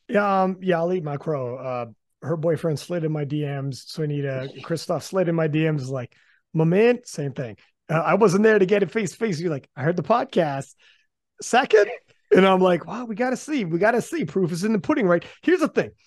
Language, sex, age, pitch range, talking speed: English, male, 30-49, 160-220 Hz, 220 wpm